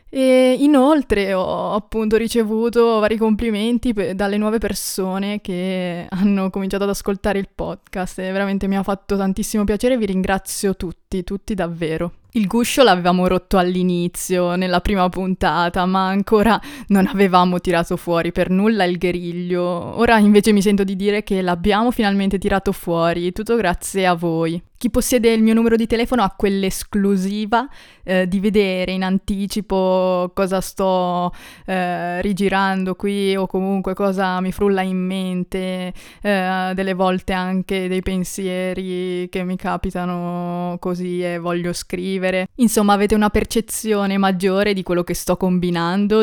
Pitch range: 180-210 Hz